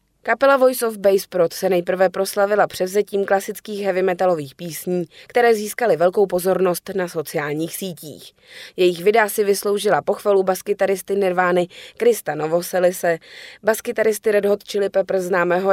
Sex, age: female, 20-39